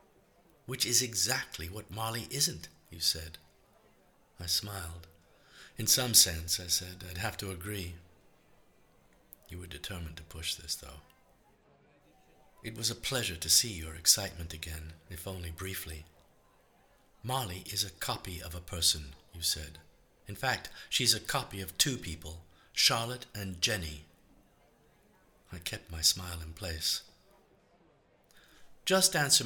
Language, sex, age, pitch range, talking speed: English, male, 50-69, 85-110 Hz, 135 wpm